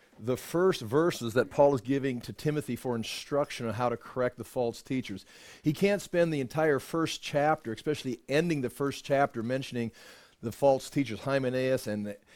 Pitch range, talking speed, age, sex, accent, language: 120-145 Hz, 175 wpm, 40-59, male, American, English